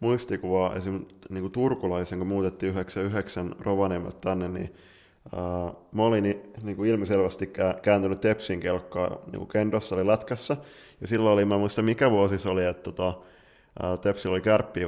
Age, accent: 20-39, native